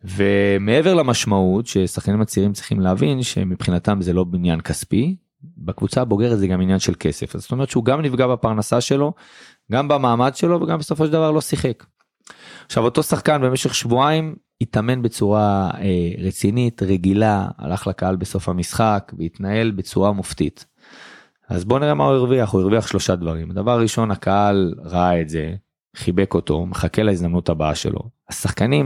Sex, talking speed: male, 140 wpm